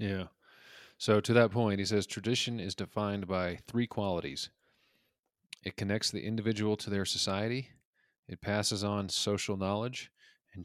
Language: English